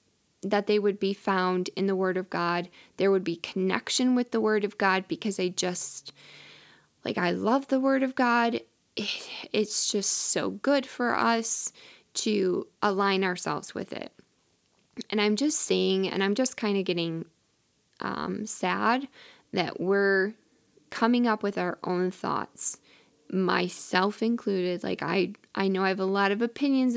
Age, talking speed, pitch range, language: 10-29, 160 wpm, 185-240 Hz, English